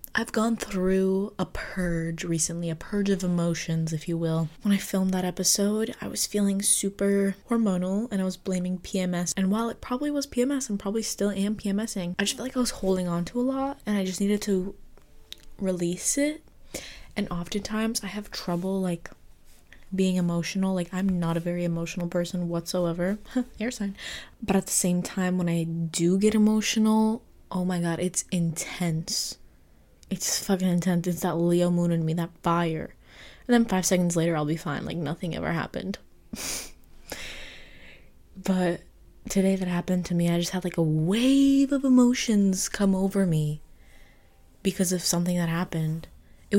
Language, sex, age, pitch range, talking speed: English, female, 20-39, 170-205 Hz, 175 wpm